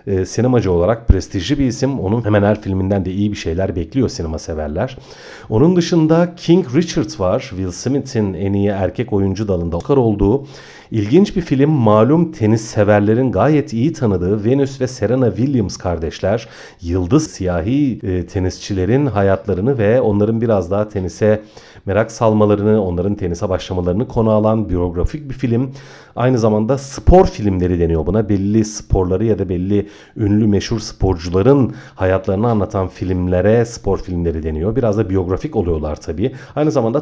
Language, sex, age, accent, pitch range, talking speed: Turkish, male, 40-59, native, 95-130 Hz, 145 wpm